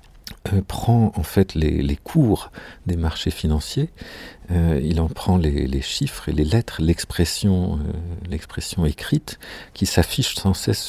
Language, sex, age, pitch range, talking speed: French, male, 50-69, 85-100 Hz, 150 wpm